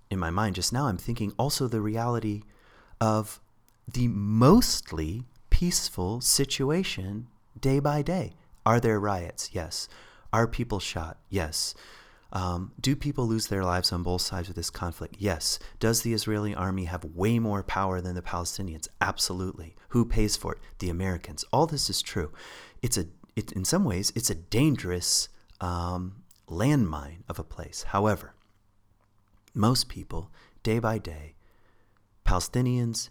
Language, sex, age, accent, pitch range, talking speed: English, male, 30-49, American, 90-115 Hz, 150 wpm